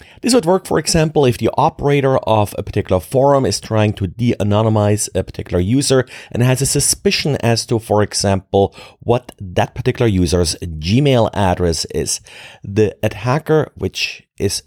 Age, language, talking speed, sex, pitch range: 30-49, English, 155 wpm, male, 100-135 Hz